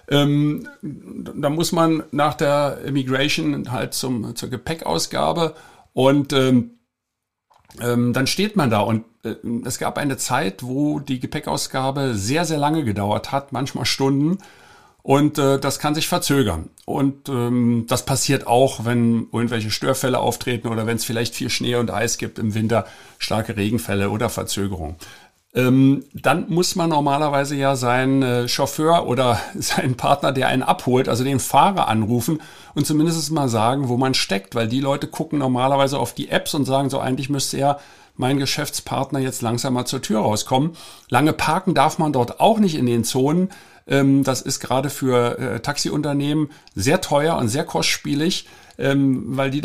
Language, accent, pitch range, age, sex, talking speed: German, German, 120-145 Hz, 50-69, male, 155 wpm